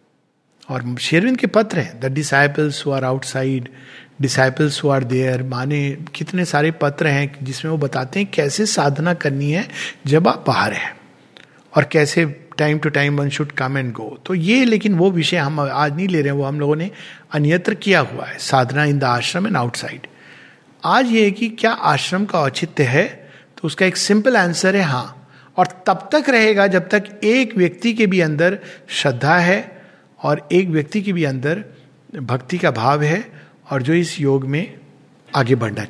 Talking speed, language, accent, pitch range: 185 wpm, Hindi, native, 140-190 Hz